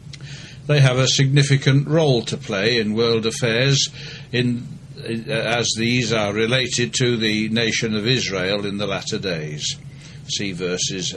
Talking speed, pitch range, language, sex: 145 wpm, 110-145 Hz, English, male